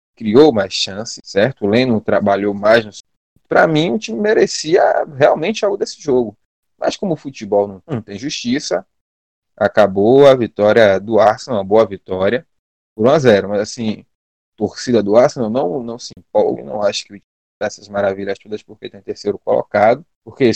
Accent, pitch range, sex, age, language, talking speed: Brazilian, 100-120 Hz, male, 20-39, Portuguese, 170 wpm